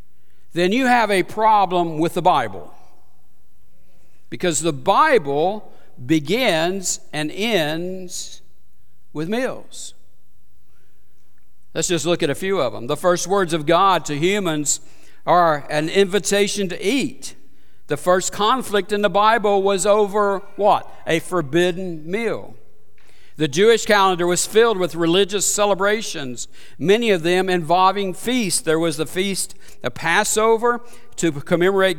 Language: English